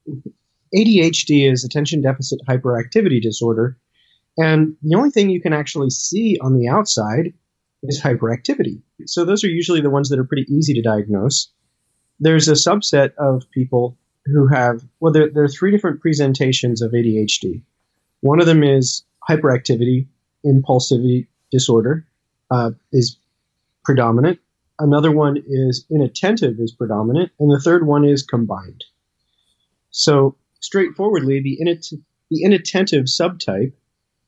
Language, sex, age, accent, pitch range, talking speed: English, male, 30-49, American, 125-155 Hz, 135 wpm